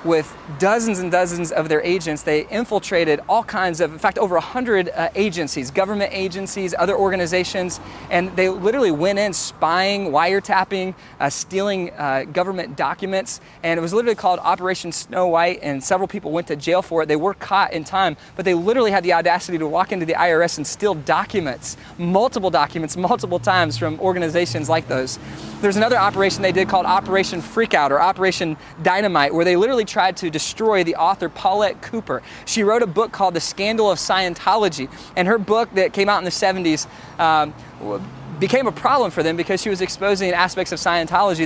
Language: English